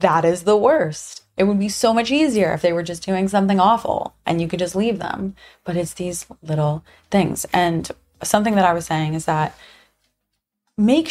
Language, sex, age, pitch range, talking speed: English, female, 20-39, 170-215 Hz, 200 wpm